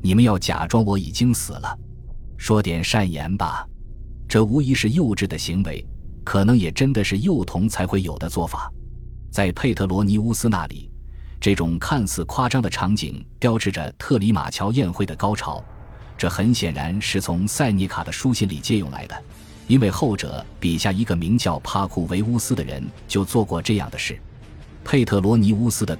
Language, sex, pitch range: Chinese, male, 85-115 Hz